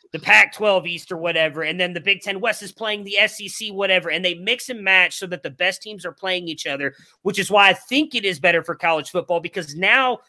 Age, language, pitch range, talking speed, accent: 30-49, English, 165-205 Hz, 250 wpm, American